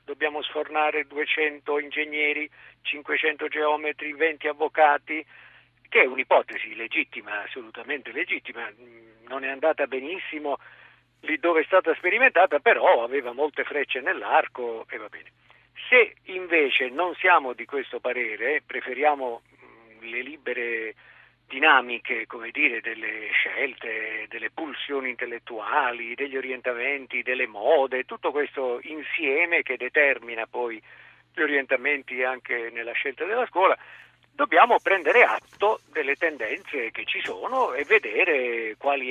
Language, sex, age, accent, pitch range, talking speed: Italian, male, 50-69, native, 125-160 Hz, 120 wpm